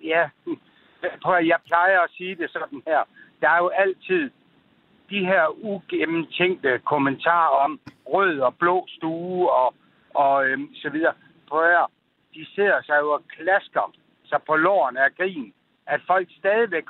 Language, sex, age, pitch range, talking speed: Danish, male, 60-79, 160-200 Hz, 155 wpm